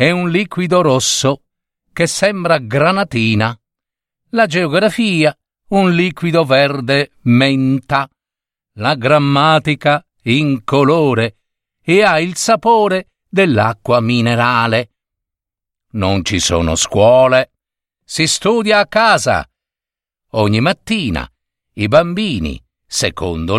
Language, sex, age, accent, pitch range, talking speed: Italian, male, 50-69, native, 110-165 Hz, 90 wpm